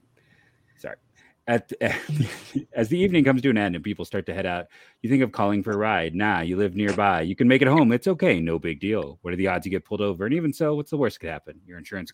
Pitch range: 90-120 Hz